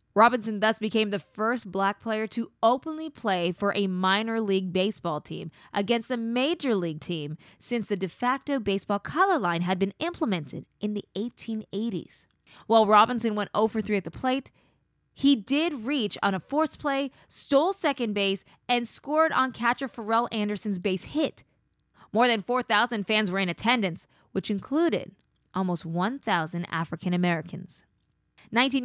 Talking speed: 155 wpm